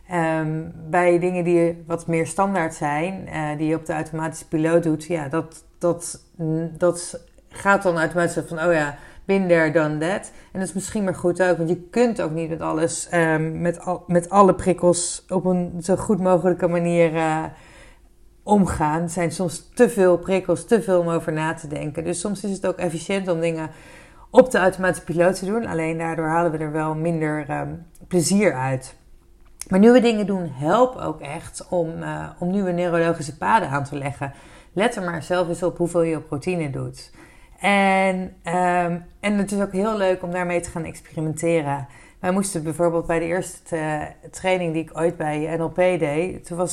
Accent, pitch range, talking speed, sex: Dutch, 160-180 Hz, 185 wpm, female